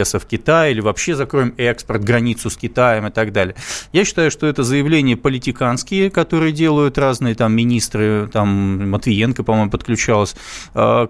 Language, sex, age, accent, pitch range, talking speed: Russian, male, 20-39, native, 120-150 Hz, 145 wpm